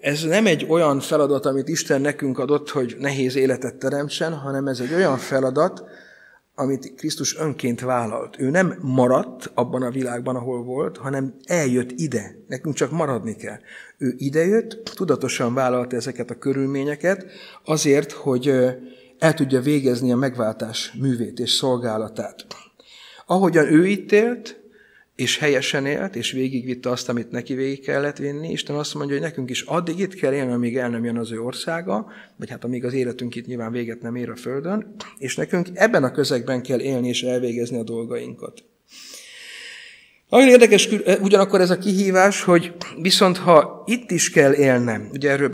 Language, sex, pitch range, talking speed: Hungarian, male, 125-175 Hz, 160 wpm